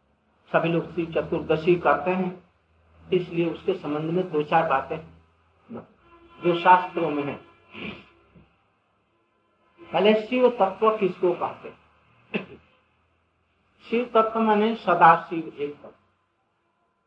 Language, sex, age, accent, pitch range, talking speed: Hindi, male, 50-69, native, 160-215 Hz, 100 wpm